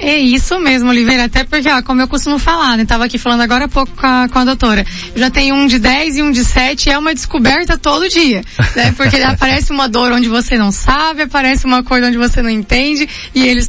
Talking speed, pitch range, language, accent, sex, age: 245 wpm, 235-275 Hz, Portuguese, Brazilian, female, 10-29